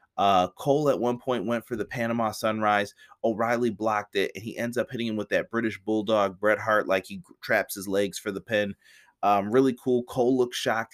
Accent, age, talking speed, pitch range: American, 30-49, 215 wpm, 95-120 Hz